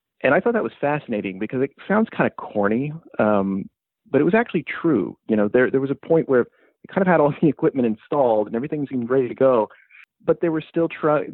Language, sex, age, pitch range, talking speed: English, male, 30-49, 100-140 Hz, 240 wpm